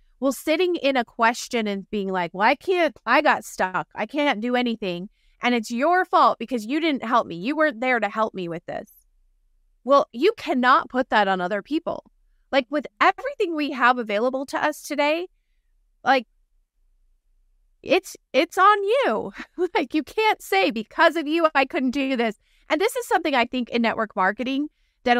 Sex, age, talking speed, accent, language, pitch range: female, 20-39, 185 wpm, American, English, 205-285 Hz